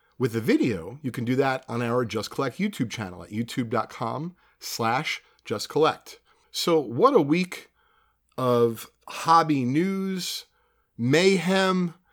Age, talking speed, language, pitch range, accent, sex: 40-59, 130 wpm, English, 125-170 Hz, American, male